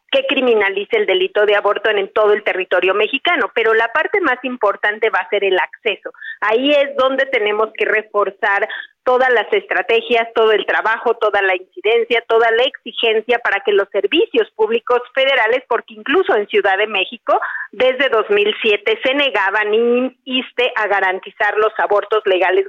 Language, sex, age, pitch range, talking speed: Spanish, female, 40-59, 210-280 Hz, 160 wpm